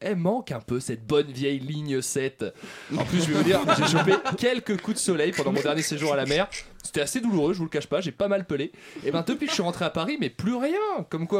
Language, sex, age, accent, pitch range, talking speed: French, male, 20-39, French, 140-215 Hz, 285 wpm